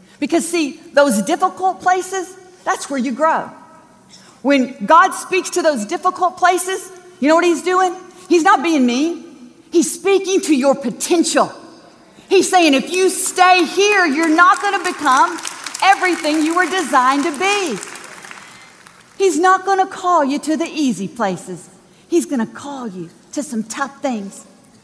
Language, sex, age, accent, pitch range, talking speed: English, female, 40-59, American, 230-345 Hz, 160 wpm